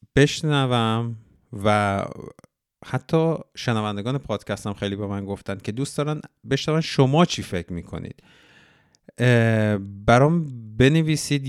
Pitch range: 100-135 Hz